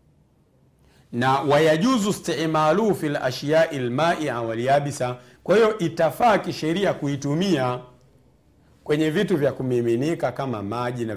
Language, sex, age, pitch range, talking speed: Swahili, male, 50-69, 105-155 Hz, 100 wpm